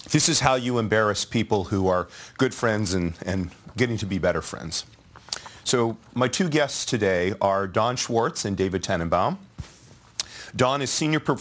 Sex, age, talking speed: male, 40-59, 165 wpm